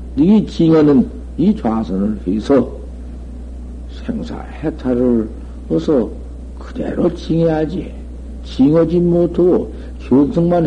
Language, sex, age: Korean, male, 60-79